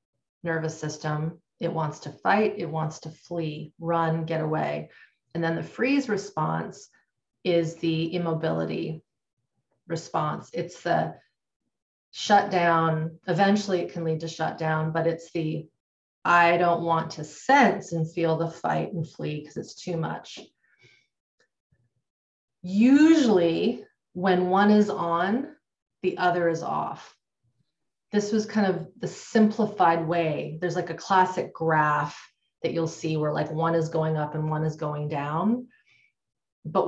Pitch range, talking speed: 155-175 Hz, 140 wpm